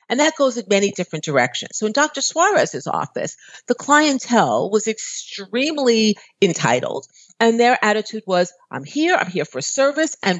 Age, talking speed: 50-69, 160 wpm